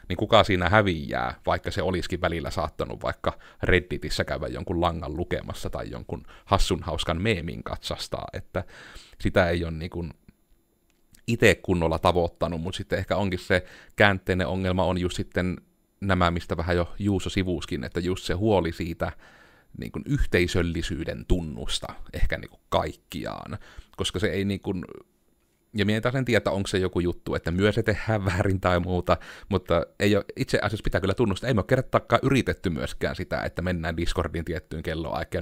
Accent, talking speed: native, 165 wpm